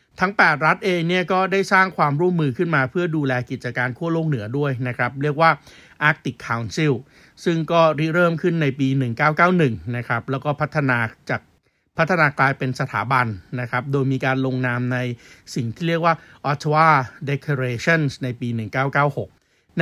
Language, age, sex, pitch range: Thai, 60-79, male, 130-160 Hz